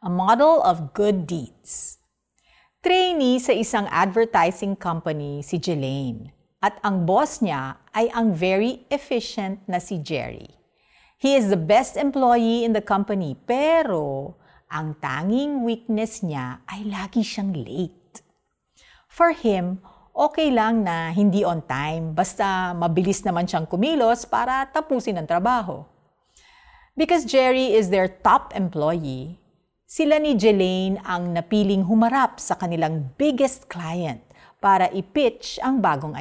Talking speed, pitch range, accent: 130 wpm, 170-235 Hz, native